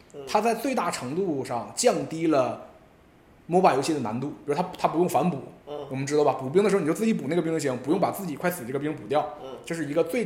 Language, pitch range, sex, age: Chinese, 130-200 Hz, male, 20-39